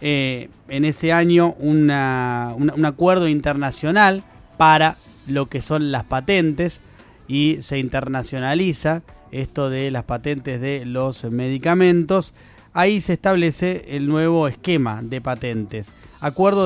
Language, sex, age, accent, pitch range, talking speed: Spanish, male, 30-49, Argentinian, 130-170 Hz, 115 wpm